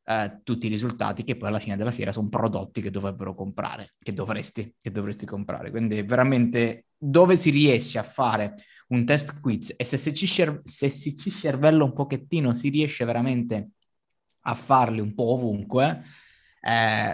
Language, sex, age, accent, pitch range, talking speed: Italian, male, 20-39, native, 110-135 Hz, 170 wpm